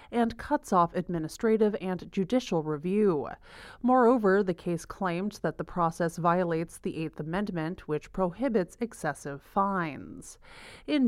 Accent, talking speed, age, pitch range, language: American, 125 wpm, 30-49, 165-210 Hz, English